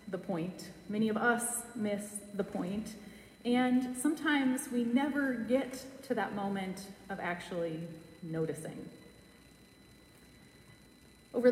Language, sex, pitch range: English, female, 200-255 Hz